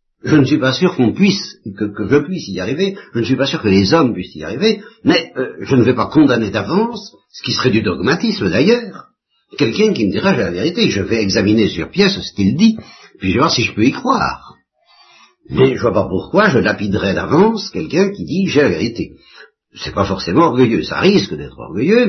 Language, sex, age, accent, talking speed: French, male, 60-79, French, 230 wpm